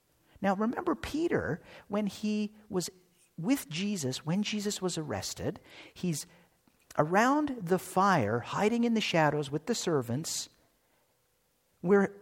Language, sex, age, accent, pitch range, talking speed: English, male, 50-69, American, 135-200 Hz, 120 wpm